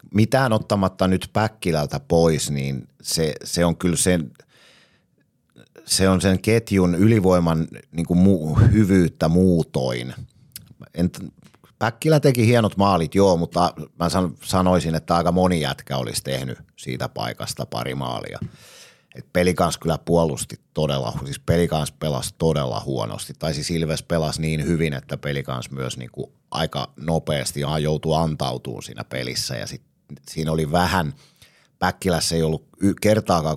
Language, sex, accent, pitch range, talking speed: Finnish, male, native, 75-95 Hz, 125 wpm